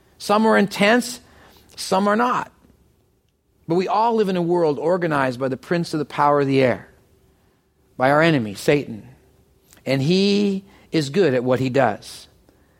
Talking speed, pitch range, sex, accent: 165 wpm, 130-190 Hz, male, American